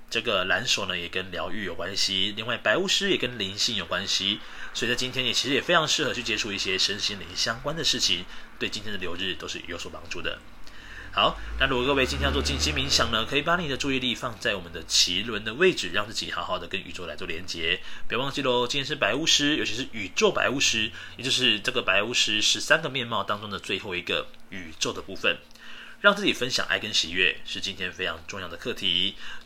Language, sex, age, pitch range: Chinese, male, 30-49, 90-125 Hz